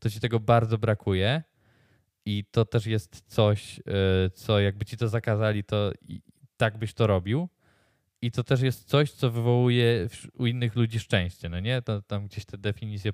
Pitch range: 100-120 Hz